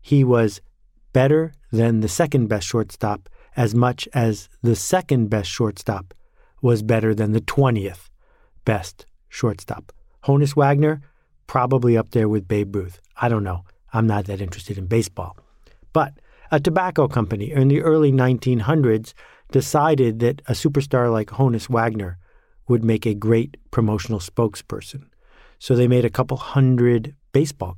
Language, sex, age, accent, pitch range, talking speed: English, male, 50-69, American, 105-135 Hz, 140 wpm